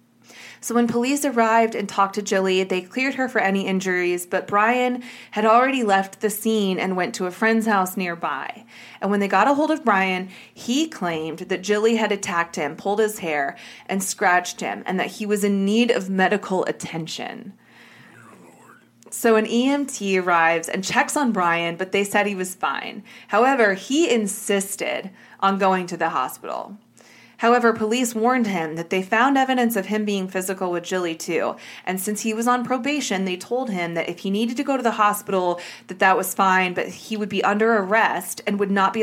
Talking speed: 195 wpm